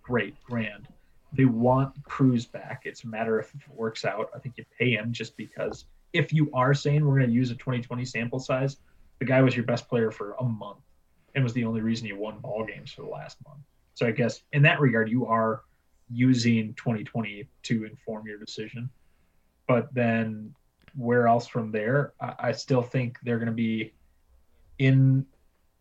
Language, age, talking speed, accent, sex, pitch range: English, 30-49, 195 wpm, American, male, 115-135 Hz